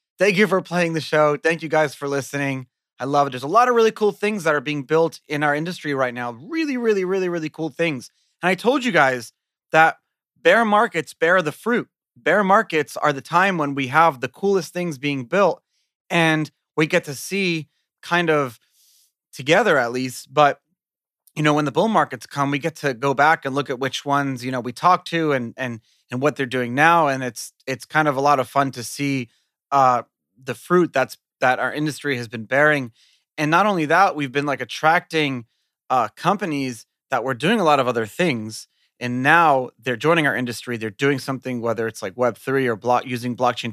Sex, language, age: male, English, 30-49